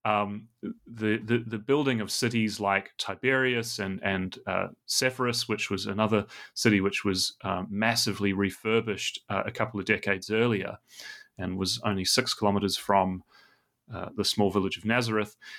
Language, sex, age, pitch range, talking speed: English, male, 30-49, 100-120 Hz, 155 wpm